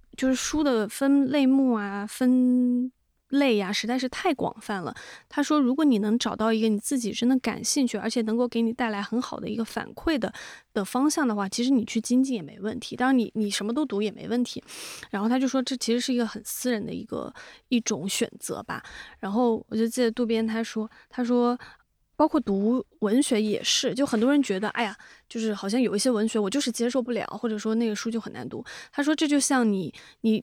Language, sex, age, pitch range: Chinese, female, 20-39, 220-260 Hz